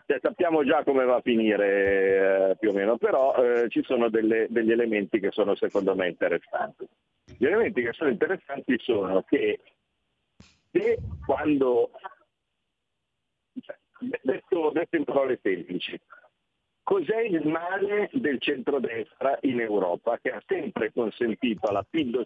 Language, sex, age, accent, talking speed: Italian, male, 50-69, native, 125 wpm